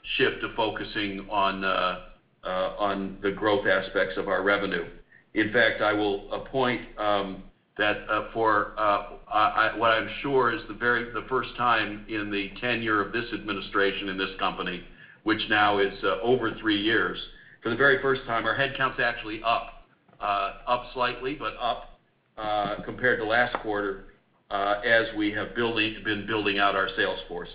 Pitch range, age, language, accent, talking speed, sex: 100-120 Hz, 50-69, English, American, 170 wpm, male